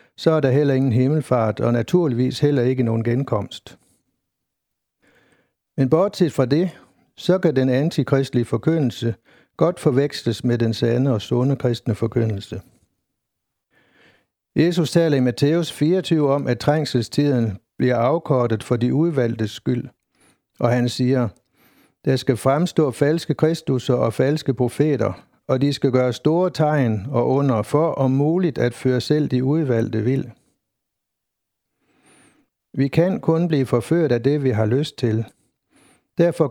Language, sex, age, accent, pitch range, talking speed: Danish, male, 60-79, native, 120-150 Hz, 140 wpm